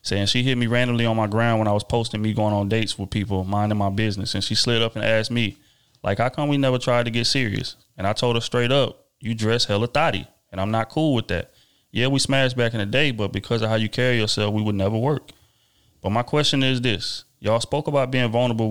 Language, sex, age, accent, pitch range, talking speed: English, male, 30-49, American, 100-115 Hz, 260 wpm